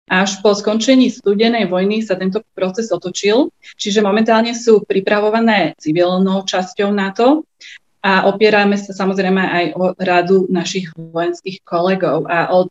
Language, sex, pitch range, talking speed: Slovak, female, 180-215 Hz, 130 wpm